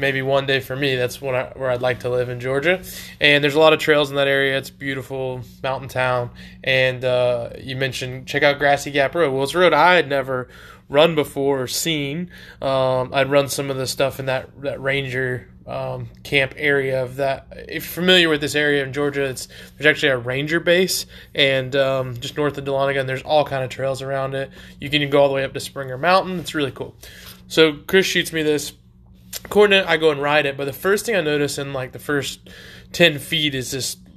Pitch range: 125-145 Hz